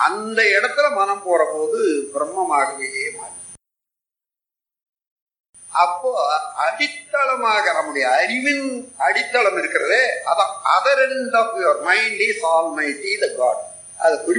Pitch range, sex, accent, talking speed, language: 225-360 Hz, male, native, 60 wpm, Tamil